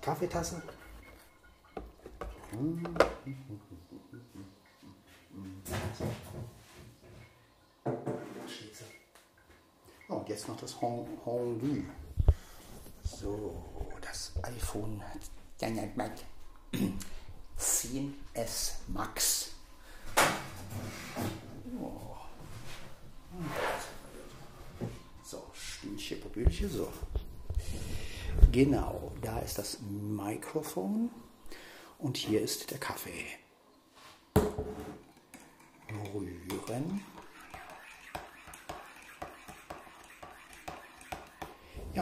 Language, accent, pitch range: German, German, 95-120 Hz